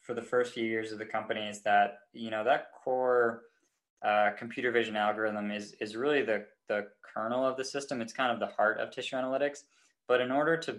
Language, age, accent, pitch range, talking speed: English, 20-39, American, 105-125 Hz, 215 wpm